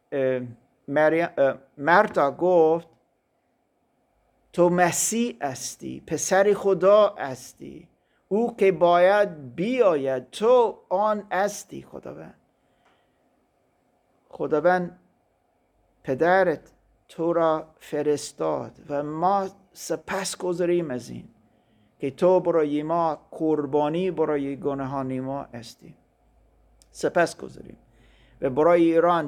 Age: 50-69